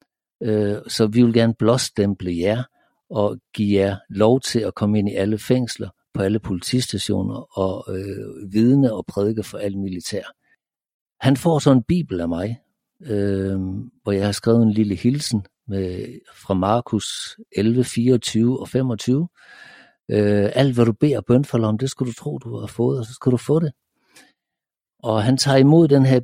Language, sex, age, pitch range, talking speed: Danish, male, 60-79, 105-130 Hz, 175 wpm